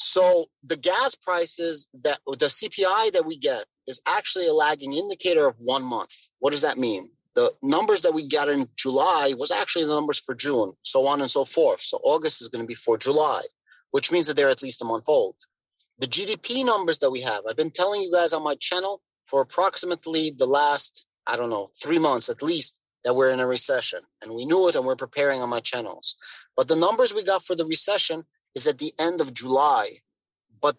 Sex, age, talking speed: male, 30-49, 220 wpm